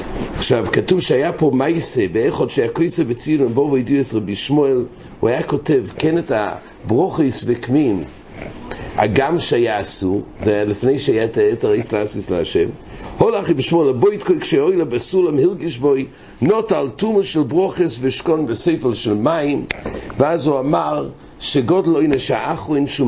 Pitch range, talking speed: 110-170 Hz, 115 wpm